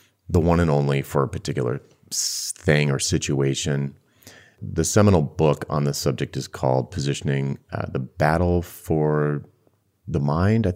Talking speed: 145 wpm